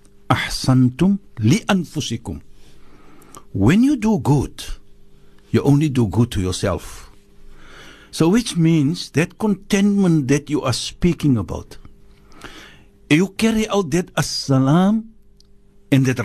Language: English